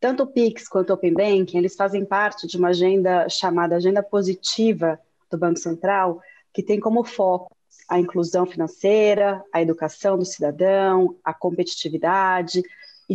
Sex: female